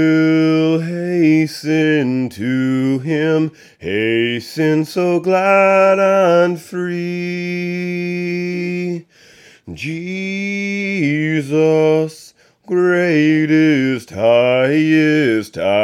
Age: 30-49